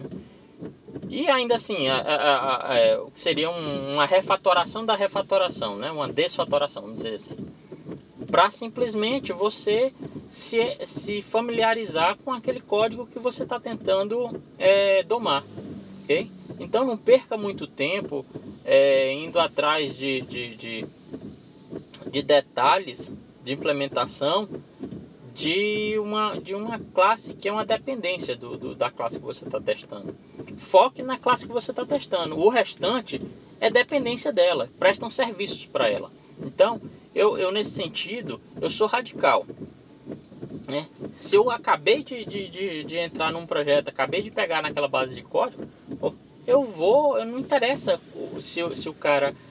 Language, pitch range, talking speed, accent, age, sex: Portuguese, 170-250 Hz, 130 wpm, Brazilian, 20-39, male